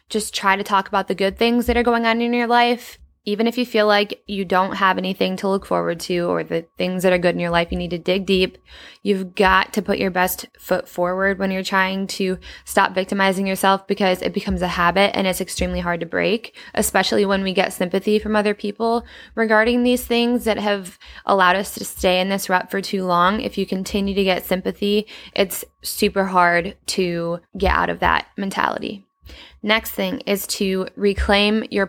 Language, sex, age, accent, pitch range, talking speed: English, female, 10-29, American, 185-215 Hz, 210 wpm